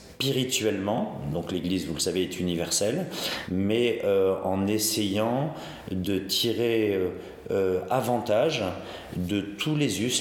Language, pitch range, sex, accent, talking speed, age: French, 90-105 Hz, male, French, 125 wpm, 40-59